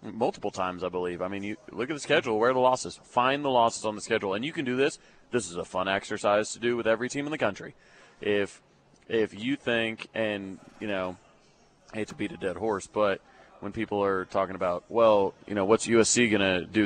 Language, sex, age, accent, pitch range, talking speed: English, male, 30-49, American, 95-115 Hz, 240 wpm